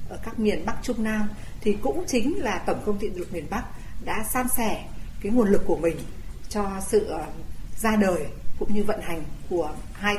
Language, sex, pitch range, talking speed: Vietnamese, female, 175-230 Hz, 200 wpm